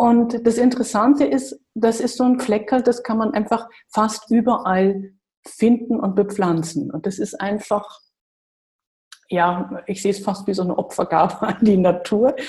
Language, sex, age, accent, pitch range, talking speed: German, female, 50-69, German, 180-225 Hz, 165 wpm